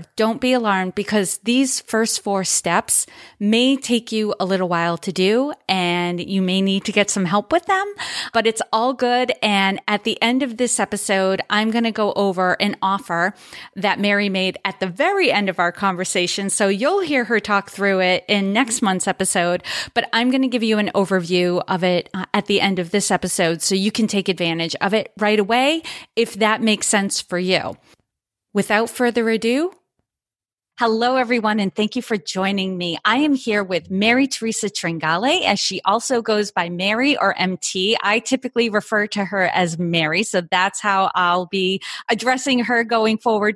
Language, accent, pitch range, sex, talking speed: English, American, 190-240 Hz, female, 190 wpm